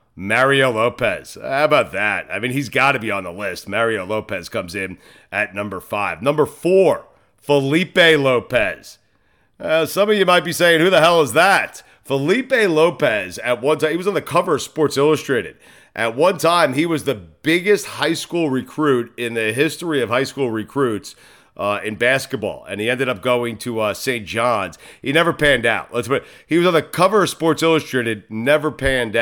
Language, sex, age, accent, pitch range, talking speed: English, male, 40-59, American, 110-155 Hz, 195 wpm